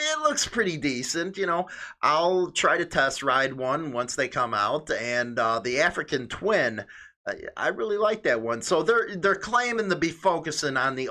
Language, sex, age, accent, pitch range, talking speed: English, male, 30-49, American, 150-215 Hz, 185 wpm